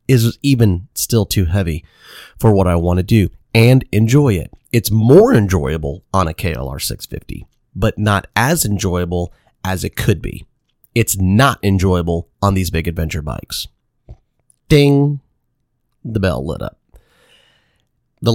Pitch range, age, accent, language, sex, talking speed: 90-110 Hz, 30-49, American, English, male, 140 wpm